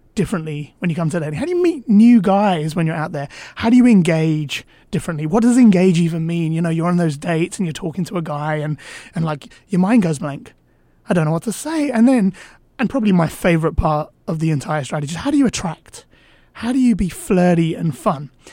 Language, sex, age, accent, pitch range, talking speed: English, male, 20-39, British, 165-220 Hz, 240 wpm